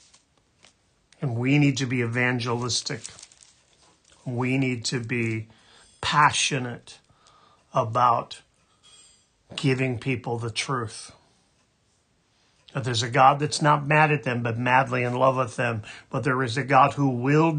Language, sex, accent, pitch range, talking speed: English, male, American, 115-135 Hz, 125 wpm